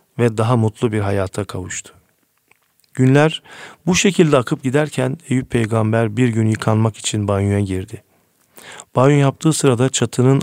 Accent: native